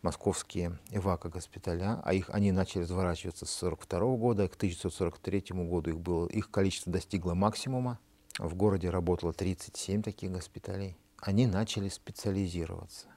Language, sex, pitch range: Russian, male, 90-100 Hz